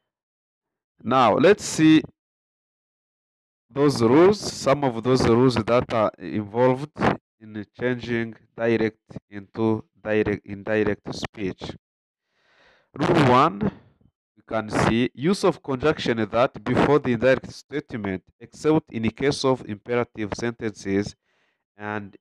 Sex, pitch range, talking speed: male, 105-135 Hz, 110 wpm